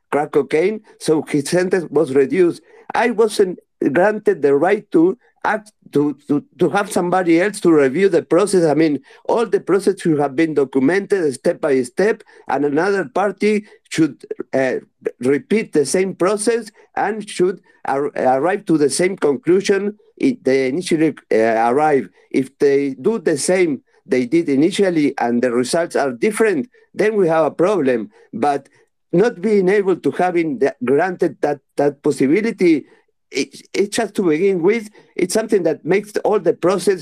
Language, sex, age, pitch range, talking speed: English, male, 50-69, 150-225 Hz, 160 wpm